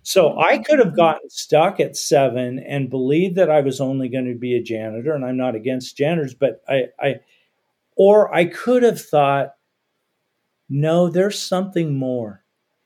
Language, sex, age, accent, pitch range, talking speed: English, male, 50-69, American, 135-175 Hz, 170 wpm